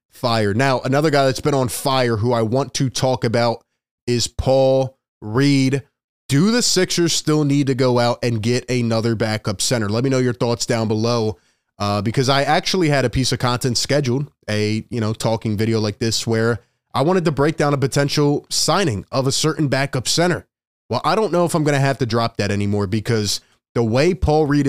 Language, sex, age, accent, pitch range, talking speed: English, male, 20-39, American, 120-140 Hz, 205 wpm